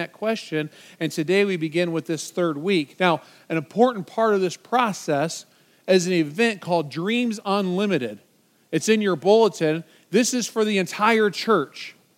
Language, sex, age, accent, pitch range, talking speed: English, male, 40-59, American, 170-215 Hz, 165 wpm